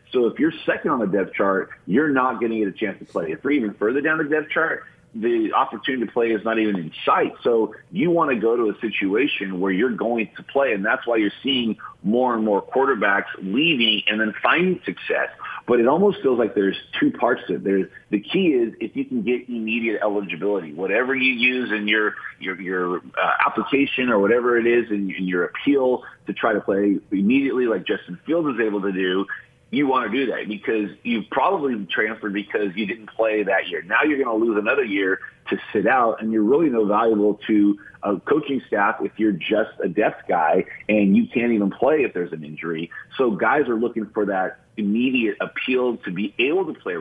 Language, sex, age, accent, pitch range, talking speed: English, male, 30-49, American, 100-125 Hz, 215 wpm